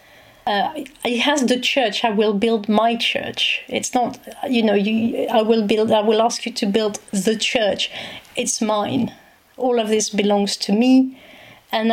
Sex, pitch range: female, 210-240 Hz